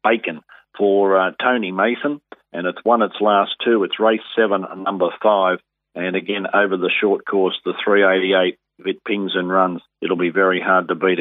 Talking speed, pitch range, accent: 185 wpm, 95-110 Hz, Australian